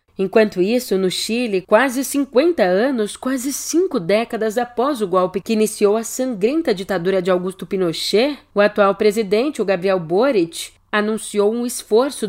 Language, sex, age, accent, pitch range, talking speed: Portuguese, female, 30-49, Brazilian, 185-230 Hz, 145 wpm